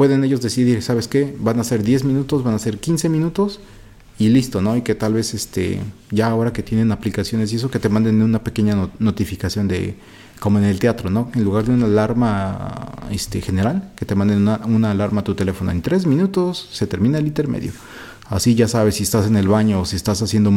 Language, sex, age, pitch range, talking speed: Spanish, male, 30-49, 105-120 Hz, 225 wpm